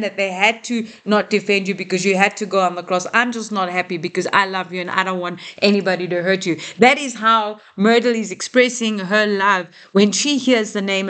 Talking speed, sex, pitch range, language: 240 wpm, female, 190-230 Hz, English